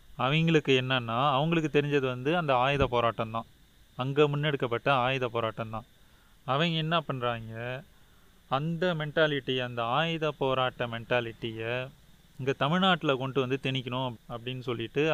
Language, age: Tamil, 30-49